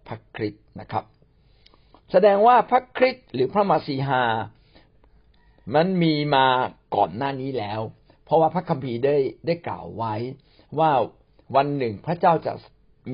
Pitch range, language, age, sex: 115-165 Hz, Thai, 60-79, male